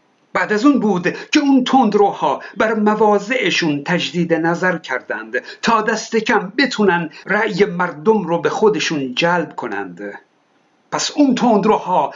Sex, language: male, Persian